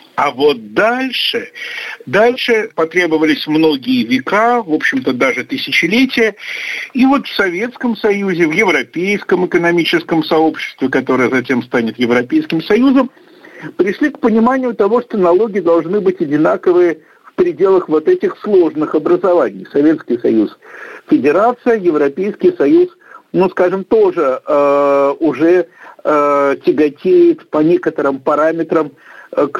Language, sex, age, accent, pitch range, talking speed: Russian, male, 50-69, native, 160-240 Hz, 115 wpm